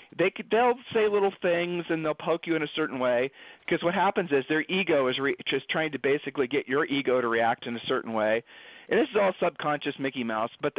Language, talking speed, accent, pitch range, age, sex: English, 220 wpm, American, 130-170 Hz, 40-59, male